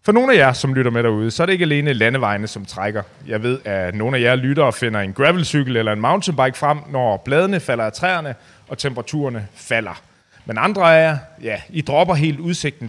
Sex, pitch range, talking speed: male, 115-160 Hz, 225 wpm